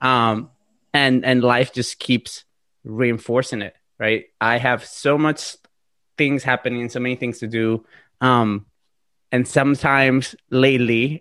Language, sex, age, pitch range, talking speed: English, male, 20-39, 110-125 Hz, 130 wpm